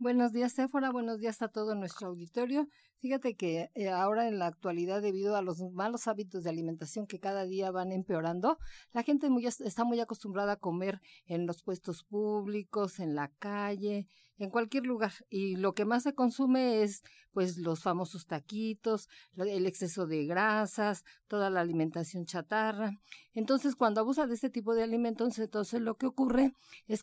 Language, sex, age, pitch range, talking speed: Spanish, female, 50-69, 190-230 Hz, 175 wpm